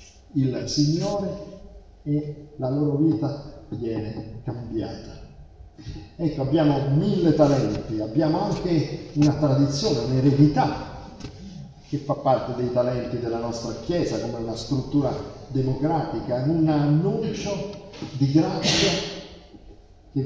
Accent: native